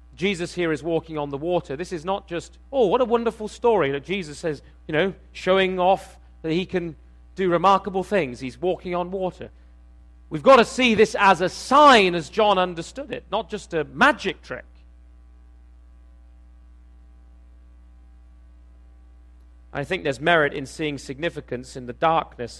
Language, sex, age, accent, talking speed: English, male, 40-59, British, 160 wpm